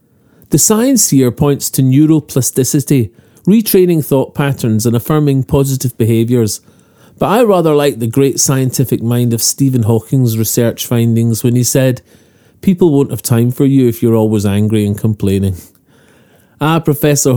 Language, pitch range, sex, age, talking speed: English, 120-170 Hz, male, 40-59, 150 wpm